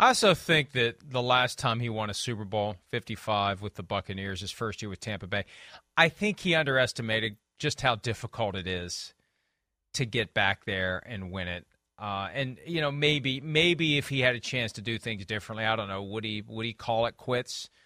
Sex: male